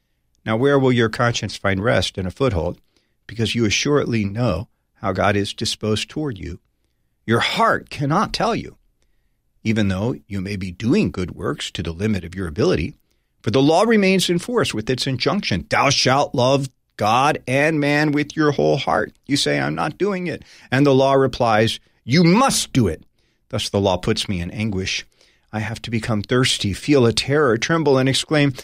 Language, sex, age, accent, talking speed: English, male, 40-59, American, 190 wpm